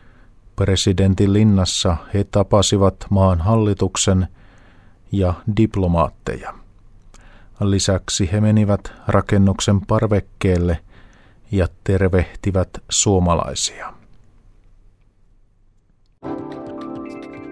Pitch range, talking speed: 95-105 Hz, 55 wpm